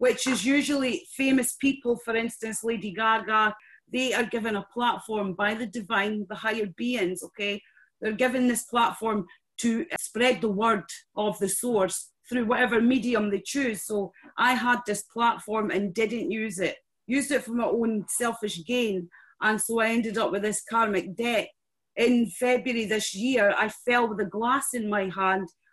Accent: British